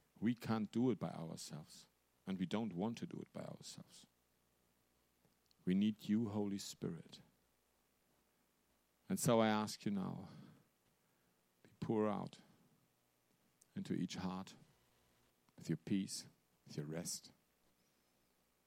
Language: Danish